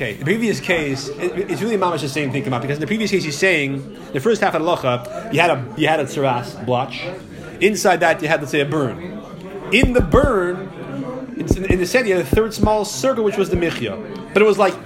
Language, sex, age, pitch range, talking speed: English, male, 30-49, 165-215 Hz, 240 wpm